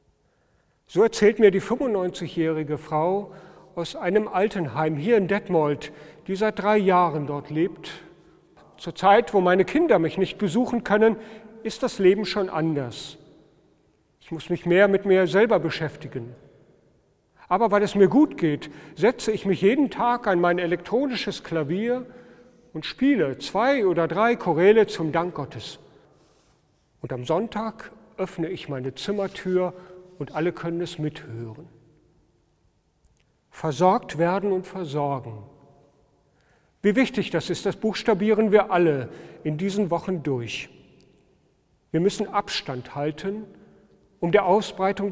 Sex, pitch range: male, 150-205 Hz